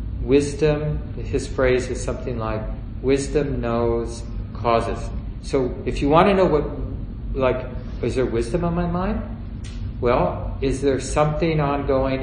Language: English